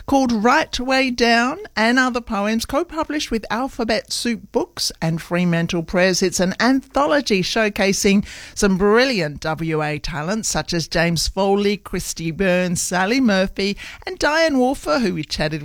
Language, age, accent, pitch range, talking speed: English, 60-79, Australian, 175-235 Hz, 140 wpm